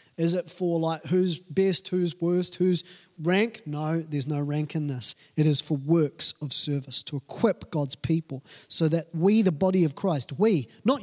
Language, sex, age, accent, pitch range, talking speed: English, male, 30-49, Australian, 150-190 Hz, 190 wpm